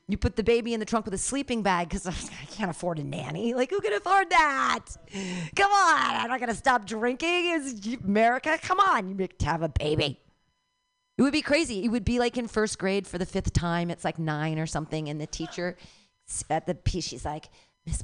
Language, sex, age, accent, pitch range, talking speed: English, female, 40-59, American, 180-250 Hz, 230 wpm